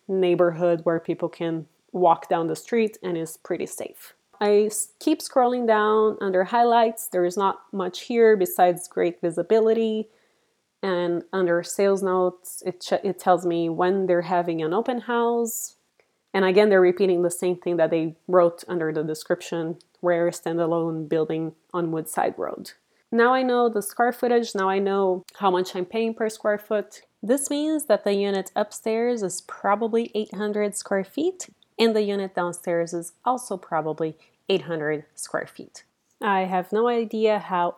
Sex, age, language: female, 20-39, English